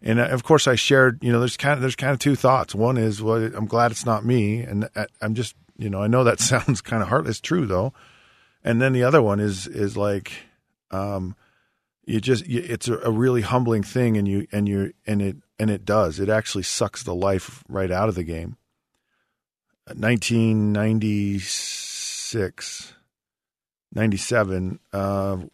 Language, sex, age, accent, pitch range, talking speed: English, male, 40-59, American, 100-115 Hz, 170 wpm